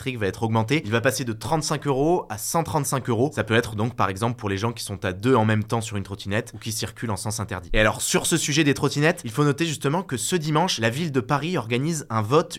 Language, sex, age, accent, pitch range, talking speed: French, male, 20-39, French, 115-160 Hz, 275 wpm